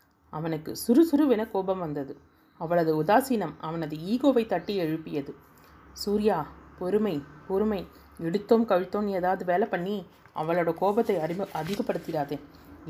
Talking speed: 100 wpm